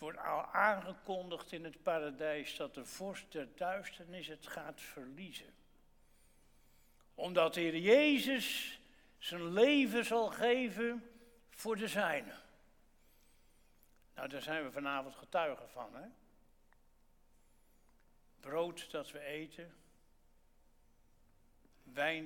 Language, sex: Dutch, male